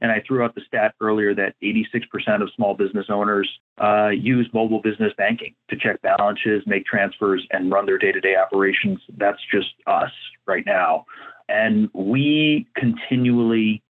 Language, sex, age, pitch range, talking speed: English, male, 40-59, 105-130 Hz, 155 wpm